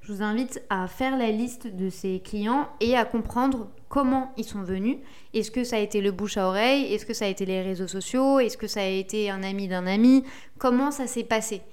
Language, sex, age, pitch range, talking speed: French, female, 20-39, 200-260 Hz, 240 wpm